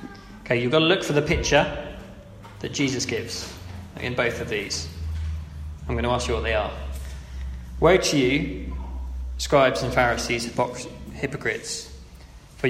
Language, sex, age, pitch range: English, male, 20-39, 110-140 Hz